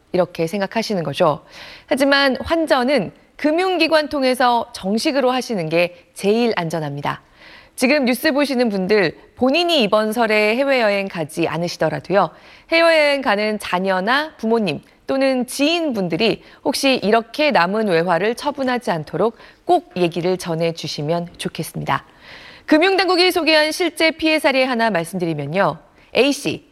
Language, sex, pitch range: Korean, female, 180-295 Hz